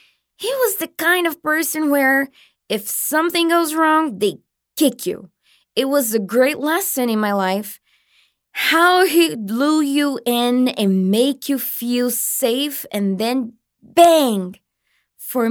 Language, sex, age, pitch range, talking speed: English, female, 20-39, 220-305 Hz, 140 wpm